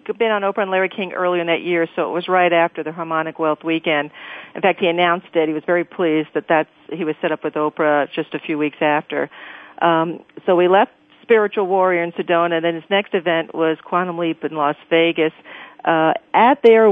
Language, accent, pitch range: English, American, 160-185 Hz